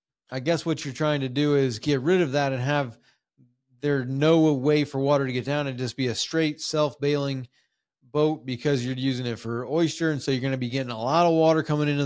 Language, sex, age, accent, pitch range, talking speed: English, male, 30-49, American, 135-160 Hz, 245 wpm